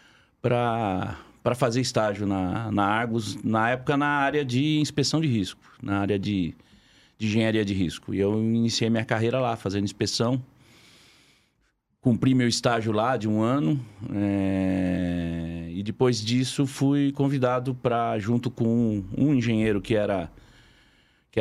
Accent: Brazilian